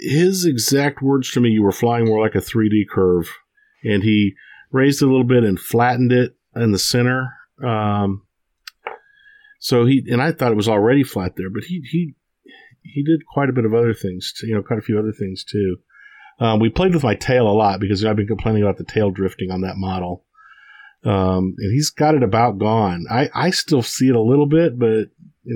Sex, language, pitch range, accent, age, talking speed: male, English, 95-130 Hz, American, 40-59, 215 wpm